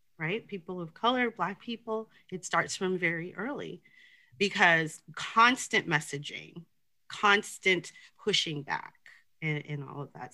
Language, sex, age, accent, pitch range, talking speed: English, female, 30-49, American, 155-230 Hz, 130 wpm